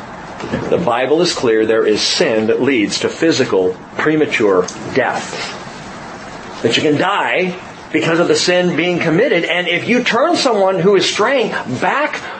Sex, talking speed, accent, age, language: male, 155 wpm, American, 40-59, English